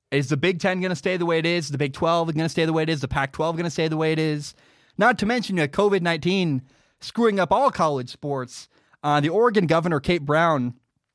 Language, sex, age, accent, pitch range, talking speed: English, male, 20-39, American, 140-180 Hz, 260 wpm